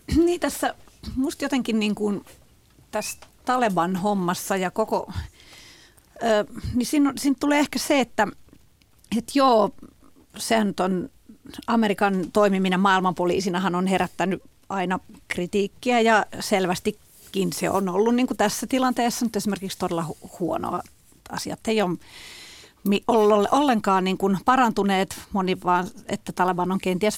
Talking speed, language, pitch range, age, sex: 120 wpm, Finnish, 190-245 Hz, 40-59, female